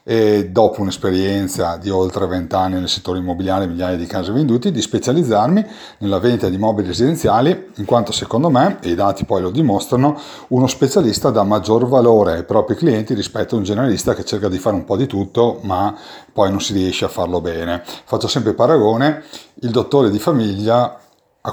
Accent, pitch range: native, 95-120 Hz